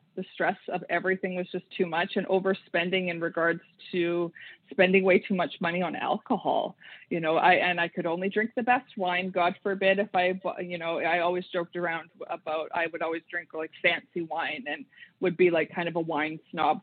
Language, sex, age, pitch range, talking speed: English, female, 20-39, 170-190 Hz, 205 wpm